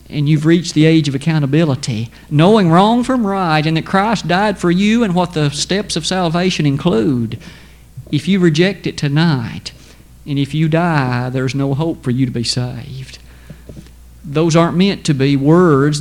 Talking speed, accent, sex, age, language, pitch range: 175 wpm, American, male, 50-69, English, 135-175 Hz